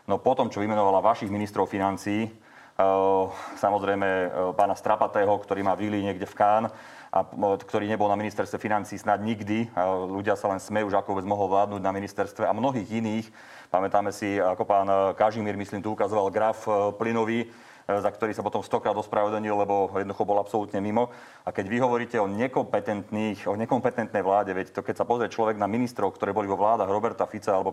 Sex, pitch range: male, 100-110 Hz